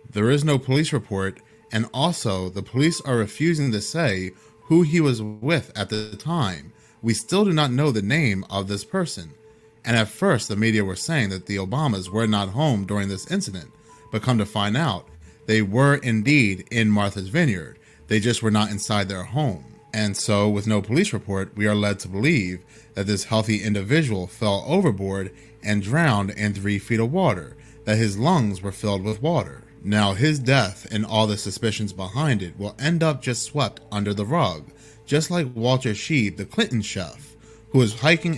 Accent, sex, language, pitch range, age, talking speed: American, male, English, 100-140 Hz, 30-49, 190 wpm